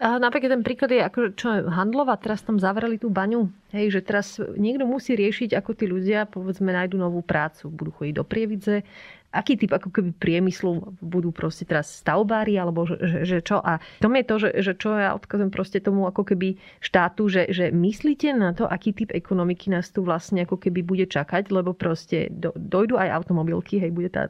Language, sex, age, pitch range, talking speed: Slovak, female, 30-49, 175-210 Hz, 205 wpm